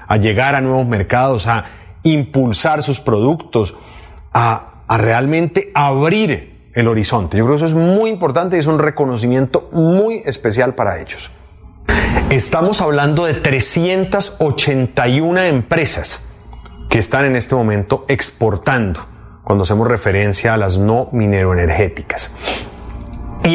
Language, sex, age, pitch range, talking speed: Spanish, male, 30-49, 105-150 Hz, 125 wpm